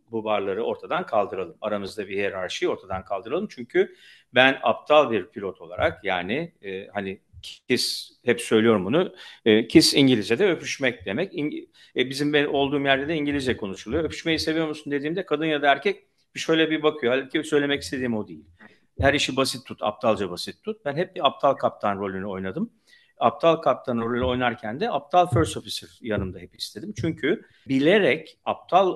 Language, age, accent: Turkish, 50-69, native